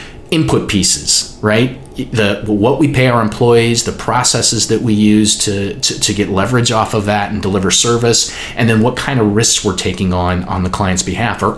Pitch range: 95-130 Hz